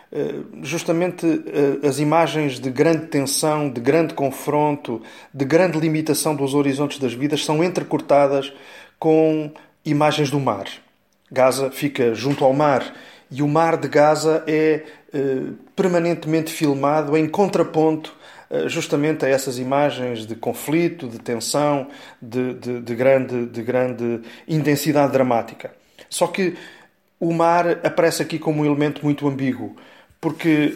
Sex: male